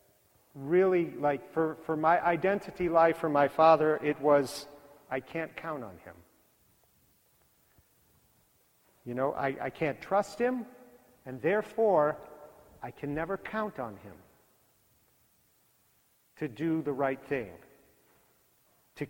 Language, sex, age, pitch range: English, male, 50-69, 140-175 Hz